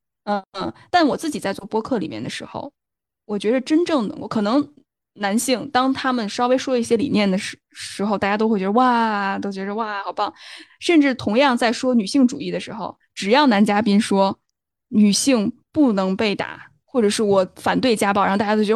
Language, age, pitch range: Chinese, 10-29, 205-275 Hz